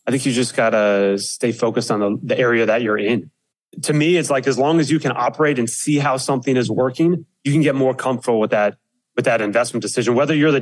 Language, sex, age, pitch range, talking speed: English, male, 30-49, 120-140 Hz, 255 wpm